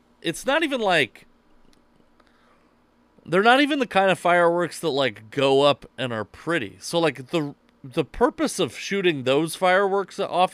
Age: 30-49